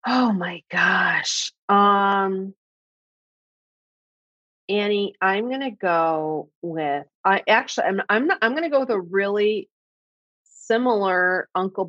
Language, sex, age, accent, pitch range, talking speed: English, female, 30-49, American, 175-220 Hz, 120 wpm